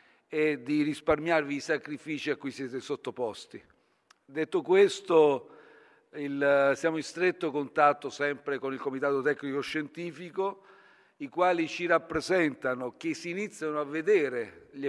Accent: native